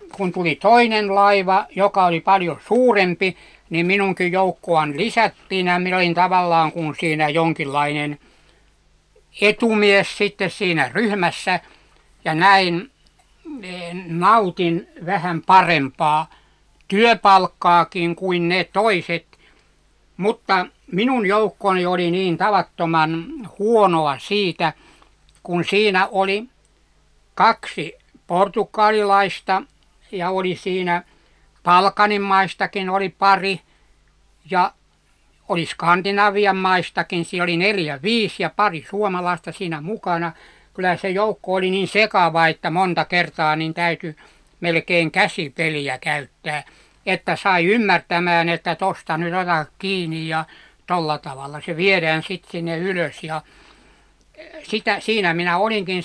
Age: 60-79